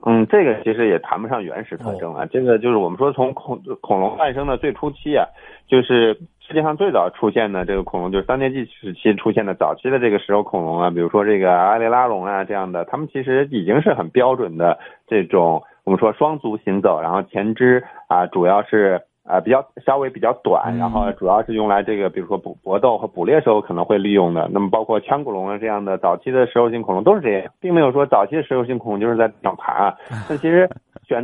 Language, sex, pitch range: Chinese, male, 100-135 Hz